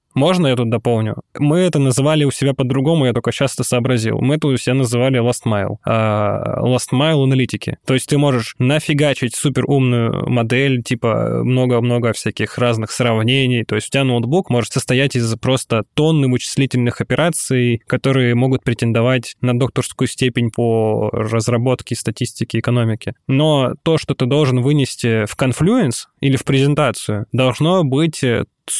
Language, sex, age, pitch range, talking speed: Russian, male, 20-39, 120-145 Hz, 150 wpm